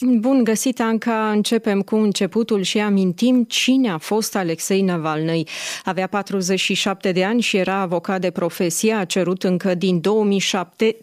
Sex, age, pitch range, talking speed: female, 30-49, 185-225 Hz, 145 wpm